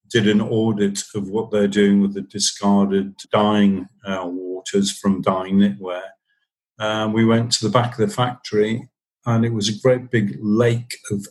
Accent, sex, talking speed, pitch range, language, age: British, male, 170 wpm, 105-125 Hz, English, 50-69